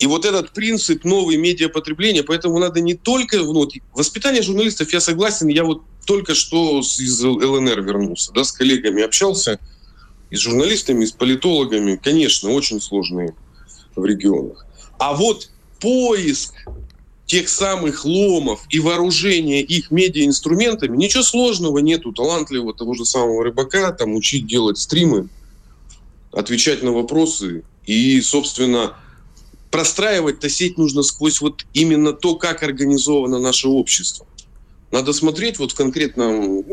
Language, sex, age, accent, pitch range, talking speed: Russian, male, 20-39, native, 110-165 Hz, 130 wpm